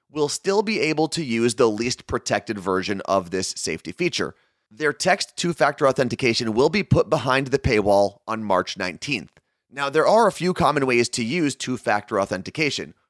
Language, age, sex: English, 30-49, male